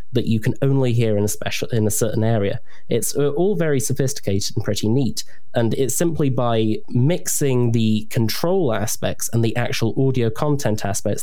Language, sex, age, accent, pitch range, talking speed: English, male, 20-39, British, 105-130 Hz, 175 wpm